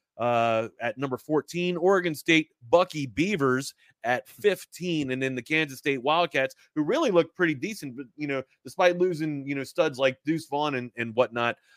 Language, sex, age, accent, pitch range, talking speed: English, male, 30-49, American, 125-160 Hz, 180 wpm